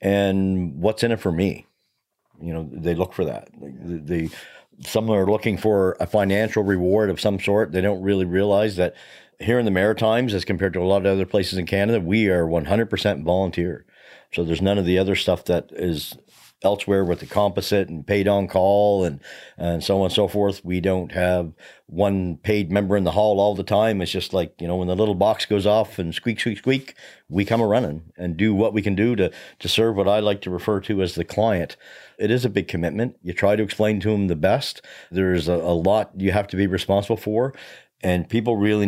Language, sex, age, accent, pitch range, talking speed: English, male, 50-69, American, 90-105 Hz, 220 wpm